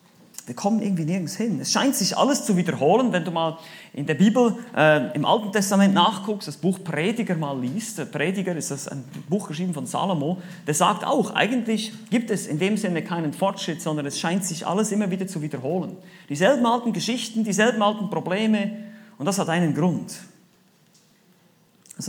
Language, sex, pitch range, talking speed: German, male, 175-215 Hz, 185 wpm